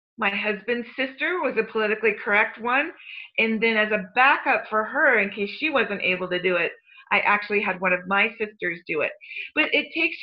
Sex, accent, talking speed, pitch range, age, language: female, American, 205 wpm, 210-285 Hz, 40-59, English